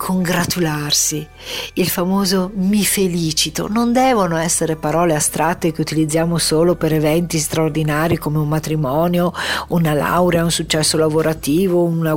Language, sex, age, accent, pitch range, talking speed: Italian, female, 50-69, native, 155-180 Hz, 125 wpm